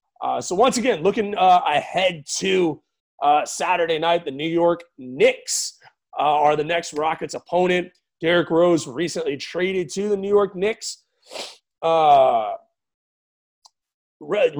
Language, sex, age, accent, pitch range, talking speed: English, male, 30-49, American, 165-195 Hz, 125 wpm